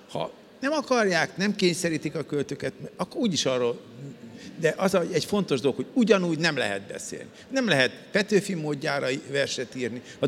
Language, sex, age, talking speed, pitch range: Hungarian, male, 60-79, 160 wpm, 120-170 Hz